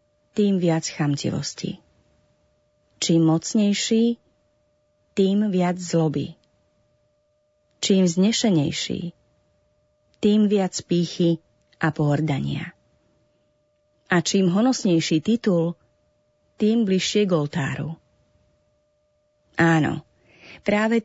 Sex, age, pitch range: female, 30-49, 140-205 Hz